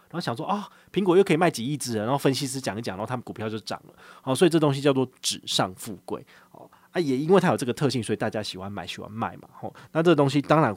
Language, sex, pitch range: Chinese, male, 110-155 Hz